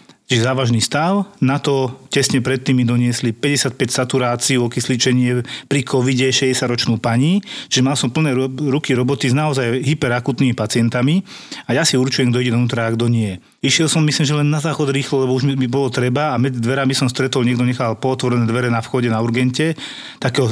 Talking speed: 185 wpm